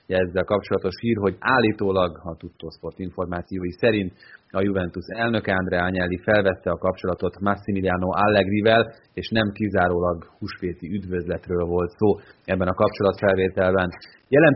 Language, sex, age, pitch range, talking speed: Hungarian, male, 30-49, 90-110 Hz, 130 wpm